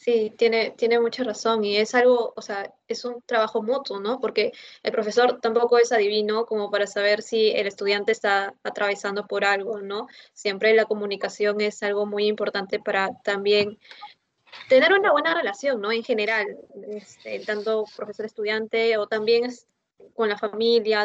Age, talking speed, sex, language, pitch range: 20-39, 160 wpm, female, English, 205-235 Hz